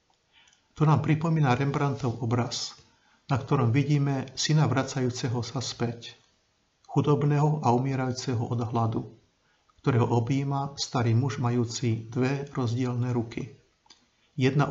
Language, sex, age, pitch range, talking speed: Slovak, male, 50-69, 120-140 Hz, 105 wpm